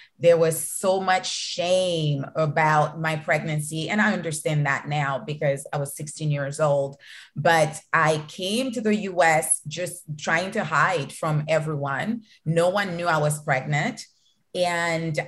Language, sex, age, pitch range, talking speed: English, female, 30-49, 155-185 Hz, 155 wpm